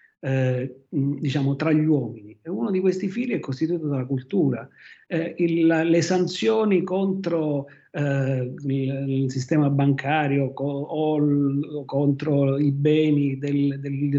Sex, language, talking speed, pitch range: male, Italian, 145 wpm, 140-175 Hz